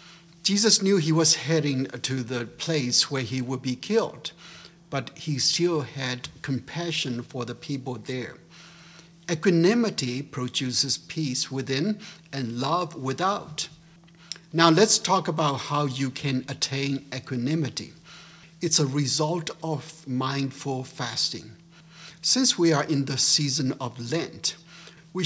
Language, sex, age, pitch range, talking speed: English, male, 60-79, 135-170 Hz, 125 wpm